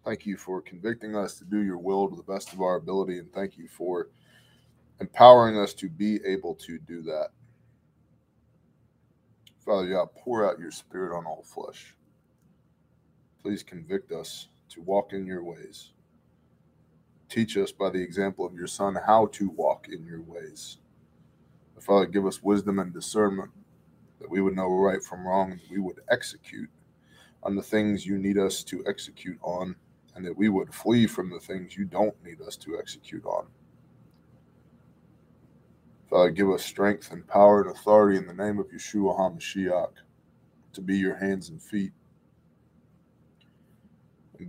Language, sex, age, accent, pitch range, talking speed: English, male, 20-39, American, 95-105 Hz, 160 wpm